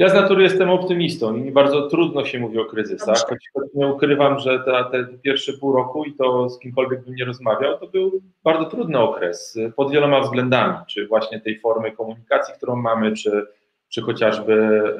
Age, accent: 30-49, native